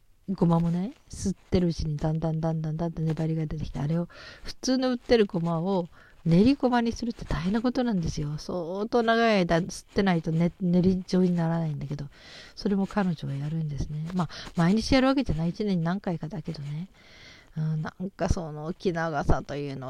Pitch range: 160-200 Hz